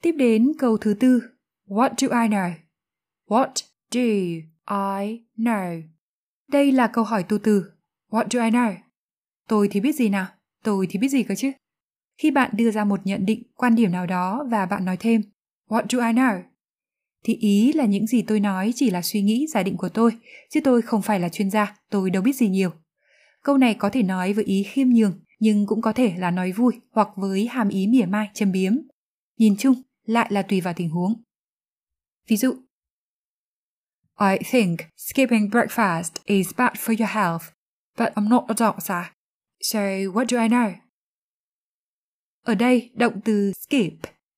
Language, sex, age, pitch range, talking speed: Vietnamese, female, 20-39, 200-245 Hz, 190 wpm